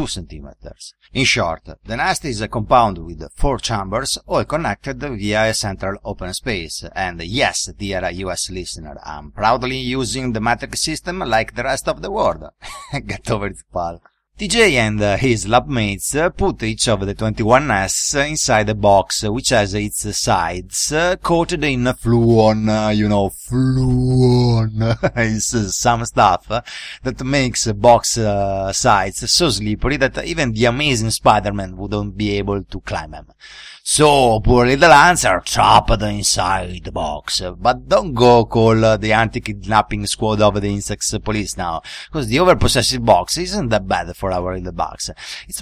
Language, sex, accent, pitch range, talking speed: English, male, Italian, 100-125 Hz, 155 wpm